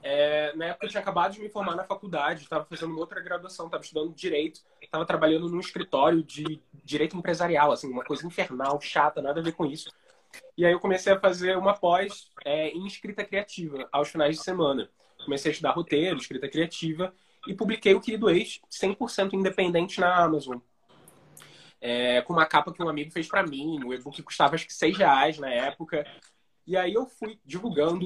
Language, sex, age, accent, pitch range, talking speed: Portuguese, male, 20-39, Brazilian, 150-190 Hz, 195 wpm